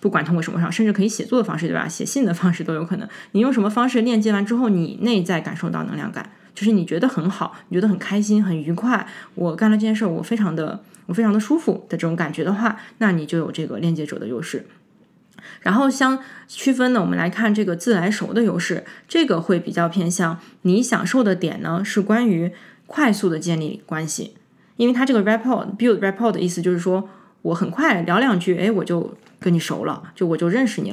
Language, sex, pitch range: Chinese, female, 170-215 Hz